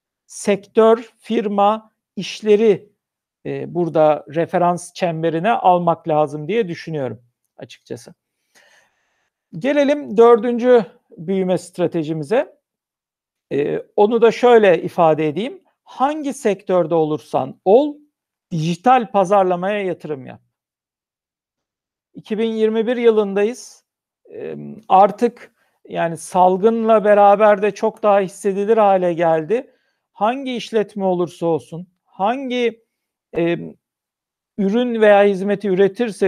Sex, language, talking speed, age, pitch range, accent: male, Turkish, 85 wpm, 60-79, 180-225 Hz, native